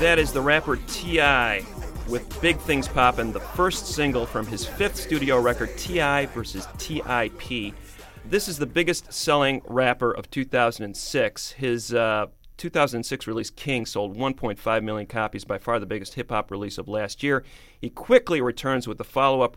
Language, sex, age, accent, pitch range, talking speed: English, male, 40-59, American, 110-145 Hz, 155 wpm